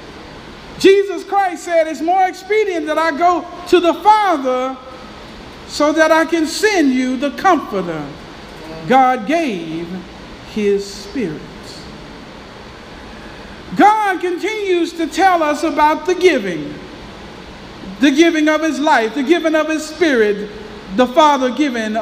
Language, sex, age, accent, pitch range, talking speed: English, male, 50-69, American, 250-365 Hz, 125 wpm